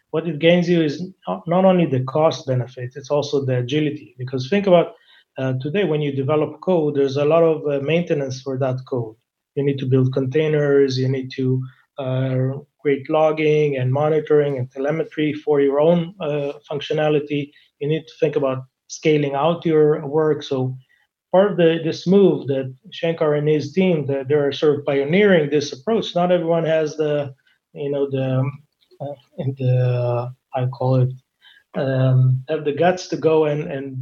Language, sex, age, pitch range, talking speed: English, male, 20-39, 135-160 Hz, 175 wpm